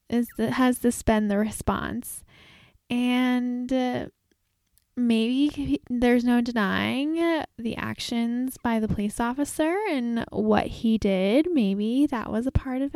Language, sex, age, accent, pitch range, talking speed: English, female, 10-29, American, 230-275 Hz, 140 wpm